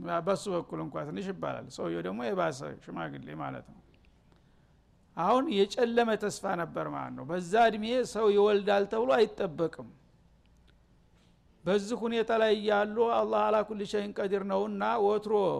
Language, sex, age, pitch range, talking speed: Amharic, male, 60-79, 175-210 Hz, 125 wpm